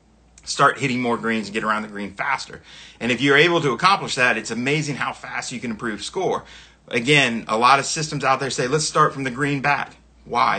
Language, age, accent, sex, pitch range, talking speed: English, 30-49, American, male, 115-150 Hz, 225 wpm